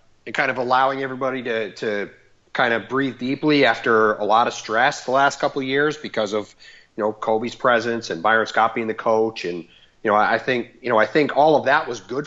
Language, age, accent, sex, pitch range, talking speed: English, 30-49, American, male, 115-150 Hz, 230 wpm